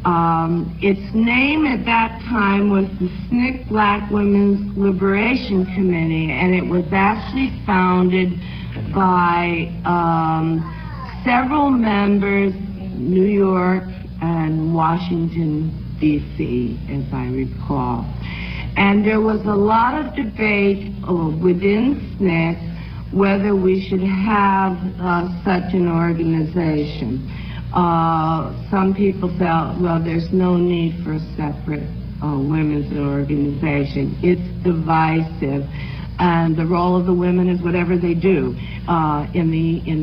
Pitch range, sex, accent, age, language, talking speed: 165-200 Hz, female, American, 50-69, English, 115 wpm